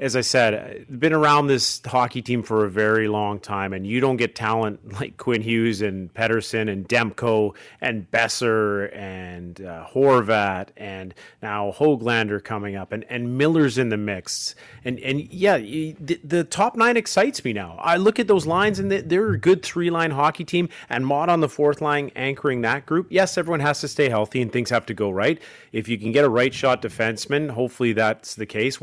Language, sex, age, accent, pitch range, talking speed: English, male, 30-49, American, 105-145 Hz, 200 wpm